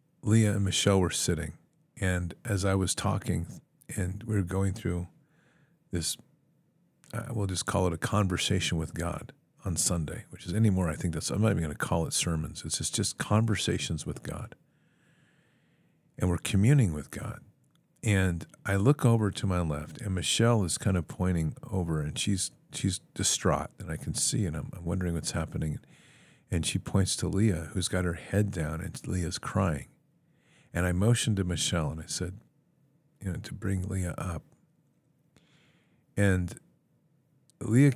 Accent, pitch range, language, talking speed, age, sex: American, 90-120 Hz, English, 170 wpm, 50-69, male